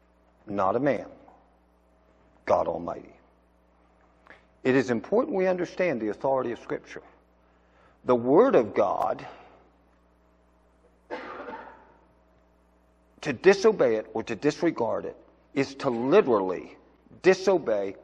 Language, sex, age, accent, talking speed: English, male, 50-69, American, 95 wpm